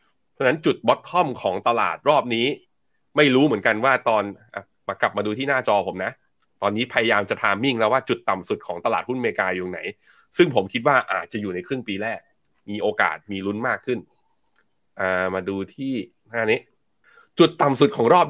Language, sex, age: Thai, male, 20-39